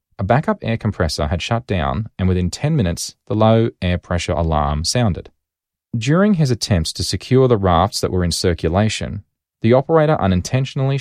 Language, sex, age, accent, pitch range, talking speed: English, male, 30-49, Australian, 85-115 Hz, 170 wpm